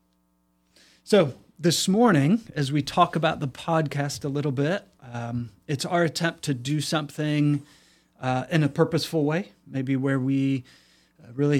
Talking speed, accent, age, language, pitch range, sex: 150 wpm, American, 30-49, English, 125-150 Hz, male